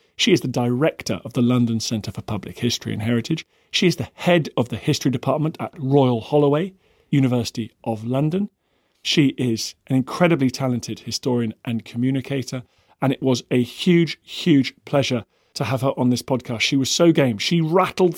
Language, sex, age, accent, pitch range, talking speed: English, male, 40-59, British, 125-165 Hz, 180 wpm